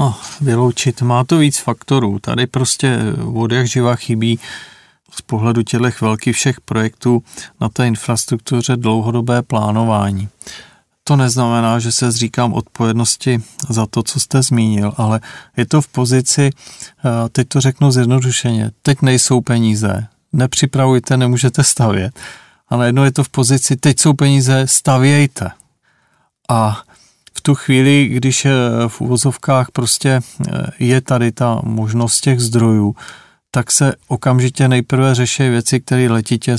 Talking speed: 135 wpm